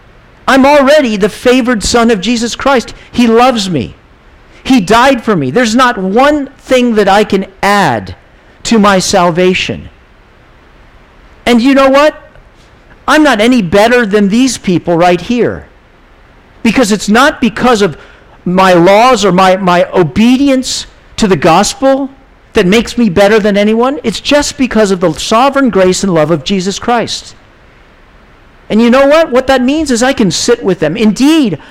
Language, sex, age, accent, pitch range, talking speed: English, male, 50-69, American, 185-255 Hz, 160 wpm